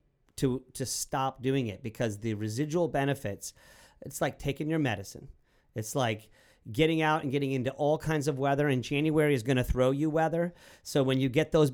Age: 40-59